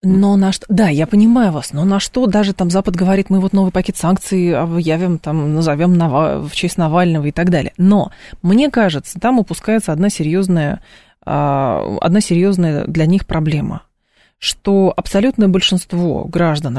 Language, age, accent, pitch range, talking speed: Russian, 20-39, native, 165-200 Hz, 155 wpm